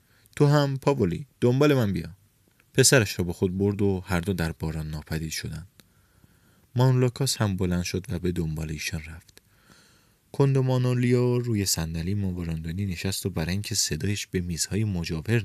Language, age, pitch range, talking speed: Persian, 30-49, 85-110 Hz, 155 wpm